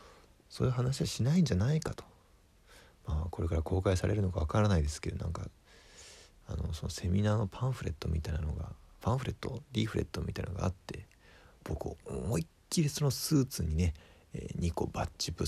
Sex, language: male, Japanese